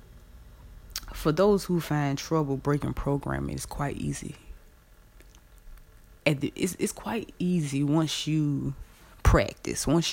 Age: 20-39